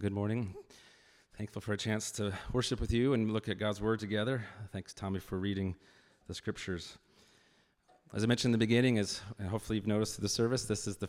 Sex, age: male, 30-49